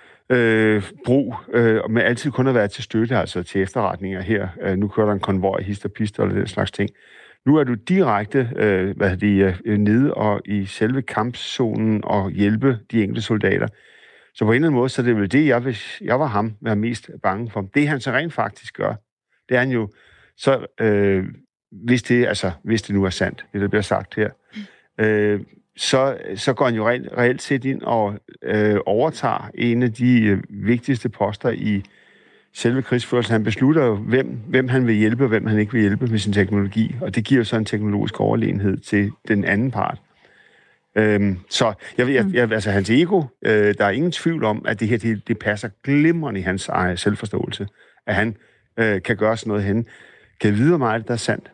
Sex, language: male, Danish